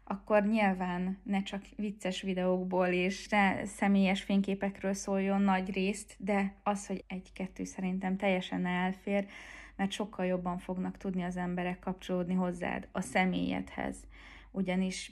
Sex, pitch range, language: female, 180-200 Hz, Hungarian